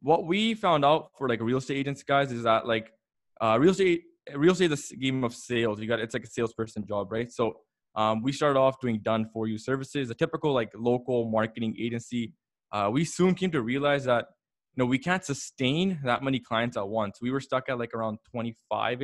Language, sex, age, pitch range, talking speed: English, male, 20-39, 115-140 Hz, 225 wpm